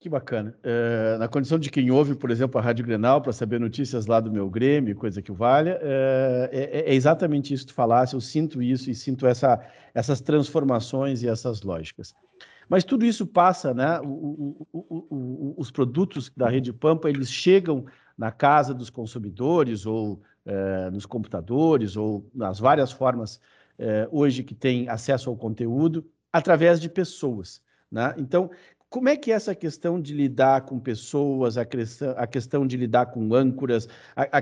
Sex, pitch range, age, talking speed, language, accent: male, 120-160 Hz, 50-69, 175 wpm, Portuguese, Brazilian